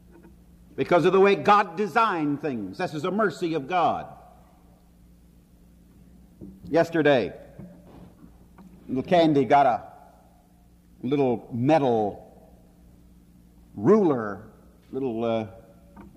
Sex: male